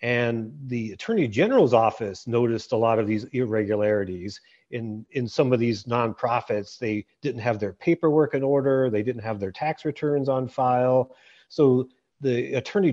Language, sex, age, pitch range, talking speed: English, male, 40-59, 110-140 Hz, 160 wpm